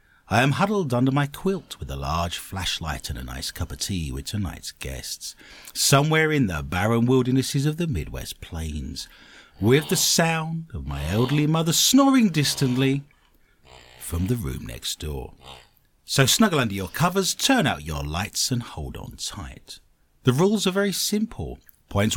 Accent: British